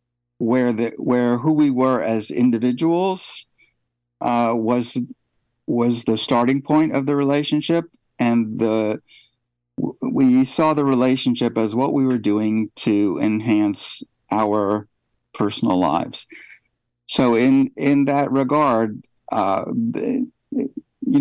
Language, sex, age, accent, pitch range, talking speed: English, male, 60-79, American, 100-130 Hz, 115 wpm